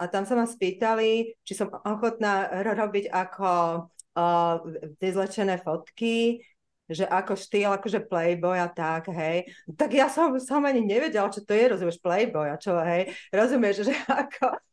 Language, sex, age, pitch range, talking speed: Slovak, female, 30-49, 180-235 Hz, 160 wpm